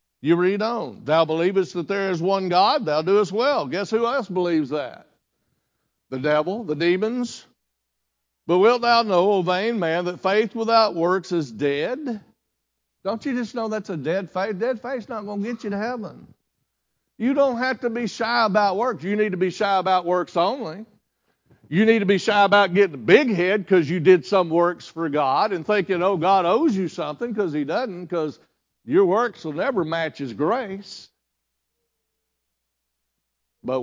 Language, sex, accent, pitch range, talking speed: English, male, American, 130-210 Hz, 185 wpm